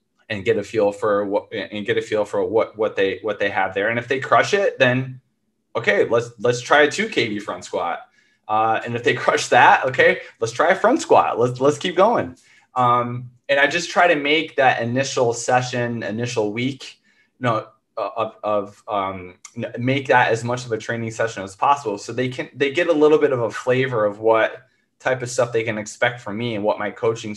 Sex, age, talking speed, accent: male, 20-39, 225 wpm, American